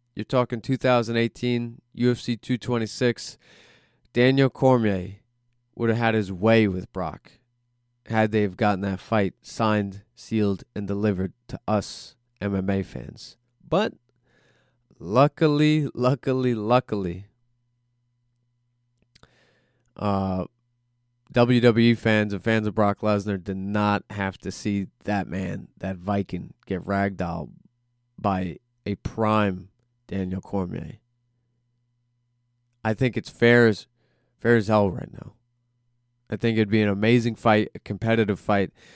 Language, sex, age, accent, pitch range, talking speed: English, male, 20-39, American, 105-120 Hz, 115 wpm